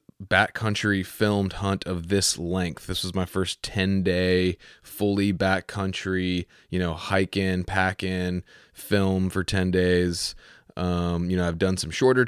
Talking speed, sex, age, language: 150 wpm, male, 20-39, English